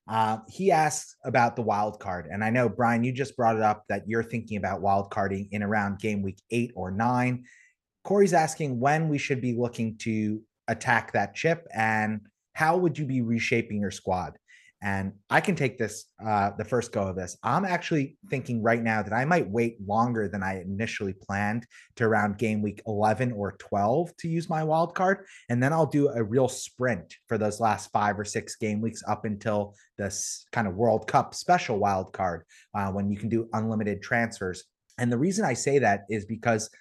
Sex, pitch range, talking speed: male, 105-130 Hz, 205 wpm